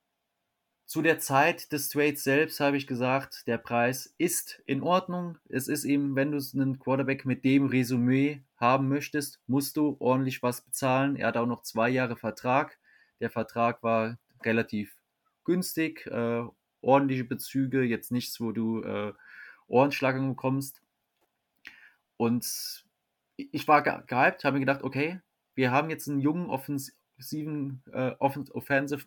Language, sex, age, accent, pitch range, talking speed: German, male, 20-39, German, 120-140 Hz, 140 wpm